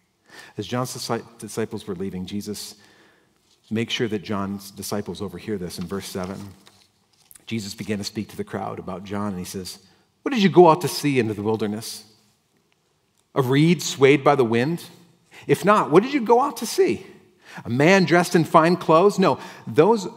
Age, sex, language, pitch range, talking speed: 40-59, male, English, 105-145 Hz, 180 wpm